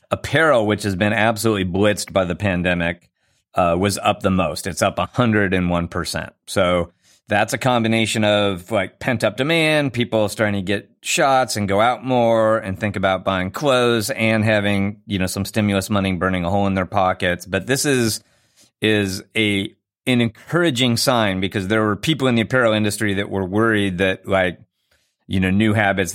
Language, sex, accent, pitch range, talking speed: English, male, American, 95-125 Hz, 180 wpm